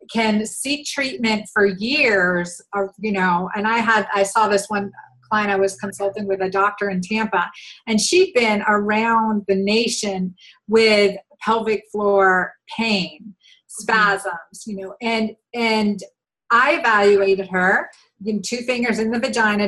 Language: English